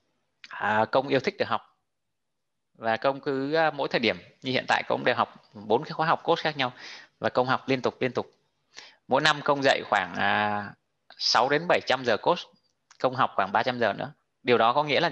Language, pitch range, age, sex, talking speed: Vietnamese, 105-135 Hz, 20-39, male, 215 wpm